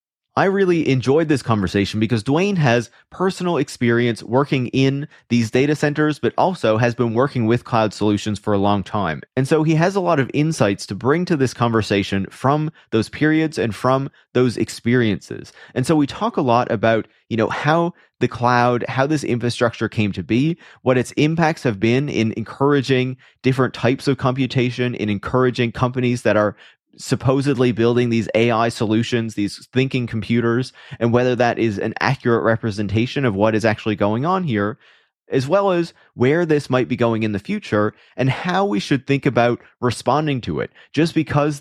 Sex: male